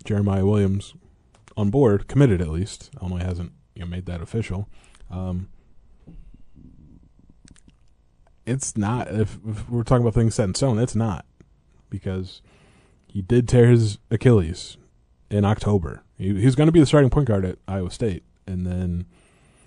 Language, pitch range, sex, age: English, 90-110 Hz, male, 20-39